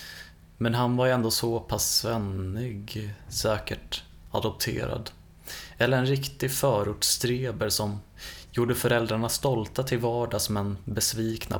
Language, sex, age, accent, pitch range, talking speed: Swedish, male, 20-39, native, 100-120 Hz, 105 wpm